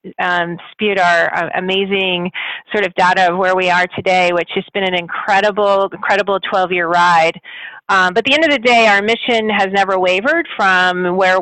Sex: female